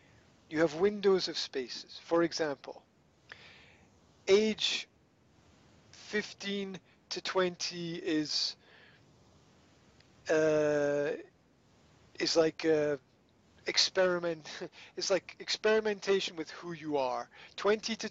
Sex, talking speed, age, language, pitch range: male, 85 wpm, 40-59, English, 155-210 Hz